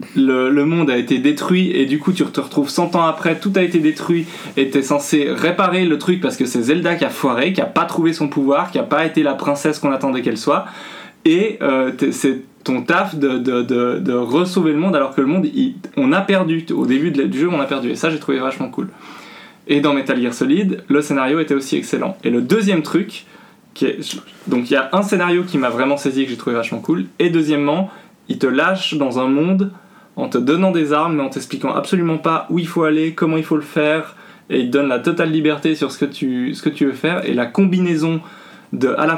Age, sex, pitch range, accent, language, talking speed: 20-39, male, 140-175 Hz, French, French, 250 wpm